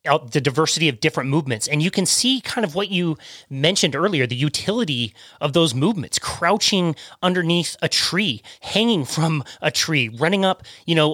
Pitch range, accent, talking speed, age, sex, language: 145-190 Hz, American, 180 wpm, 30-49, male, English